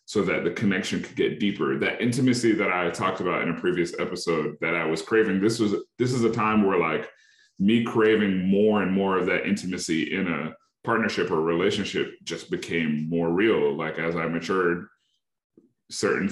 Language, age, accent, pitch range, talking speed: English, 30-49, American, 90-110 Hz, 190 wpm